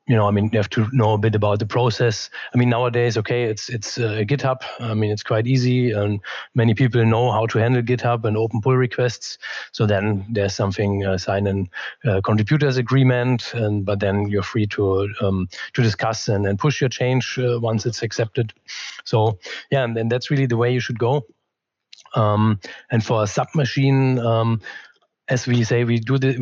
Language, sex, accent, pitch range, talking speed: English, male, German, 105-125 Hz, 200 wpm